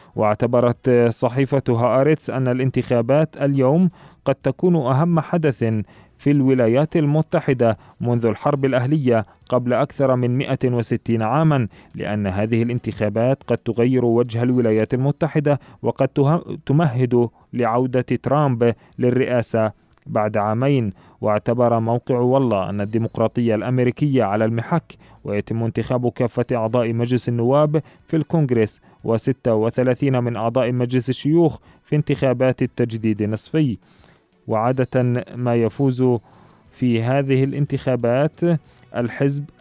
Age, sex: 30-49, male